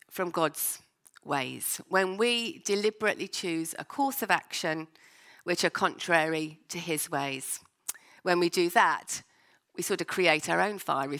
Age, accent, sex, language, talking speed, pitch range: 40-59, British, female, English, 150 wpm, 175-215 Hz